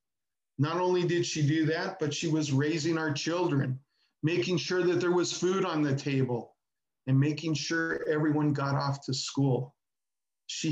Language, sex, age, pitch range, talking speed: English, male, 40-59, 135-165 Hz, 170 wpm